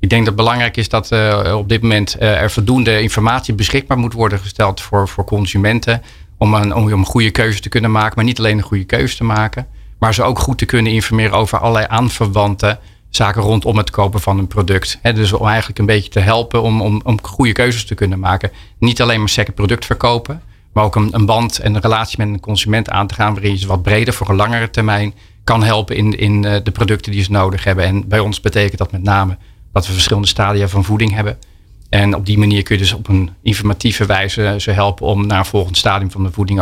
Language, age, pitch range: Dutch, 40-59, 100-110 Hz